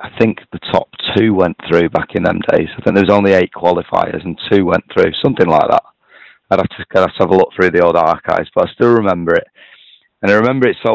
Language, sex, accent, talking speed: English, male, British, 250 wpm